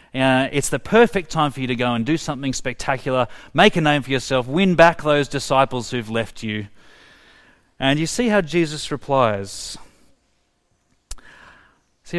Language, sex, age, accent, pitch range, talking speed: English, male, 30-49, Australian, 120-155 Hz, 160 wpm